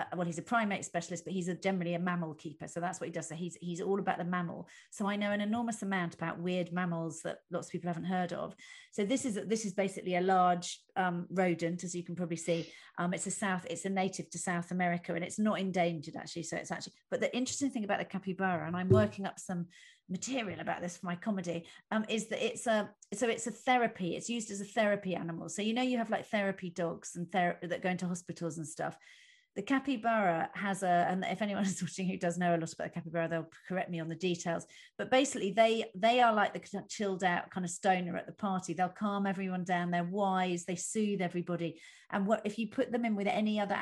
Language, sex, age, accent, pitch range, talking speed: English, female, 40-59, British, 175-205 Hz, 250 wpm